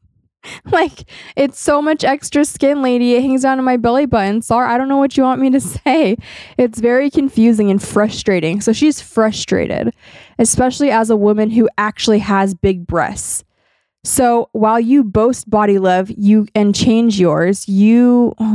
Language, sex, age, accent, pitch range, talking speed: English, female, 20-39, American, 190-230 Hz, 170 wpm